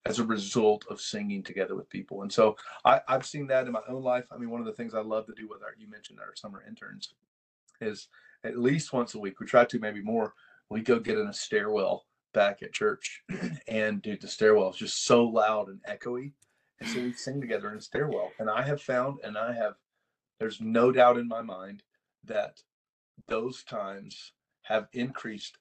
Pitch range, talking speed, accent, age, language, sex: 110-140 Hz, 215 wpm, American, 40-59, English, male